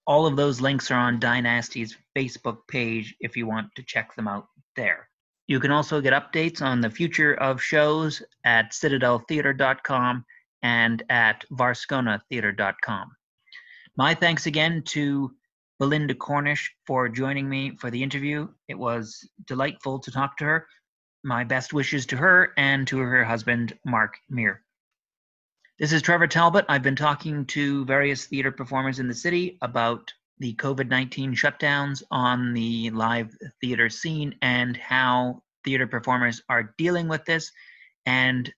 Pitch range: 125-145 Hz